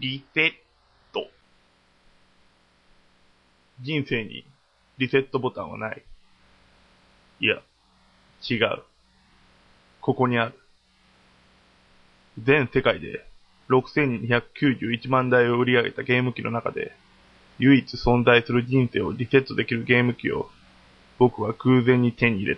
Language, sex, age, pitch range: Japanese, male, 20-39, 100-130 Hz